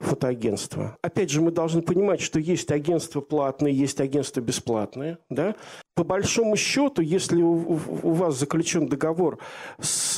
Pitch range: 135-170 Hz